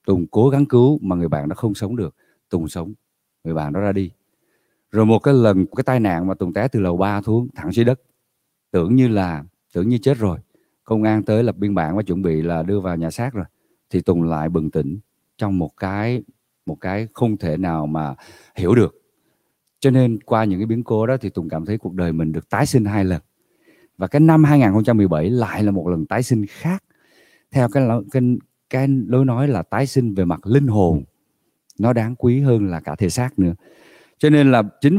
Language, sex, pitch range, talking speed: Vietnamese, male, 95-130 Hz, 225 wpm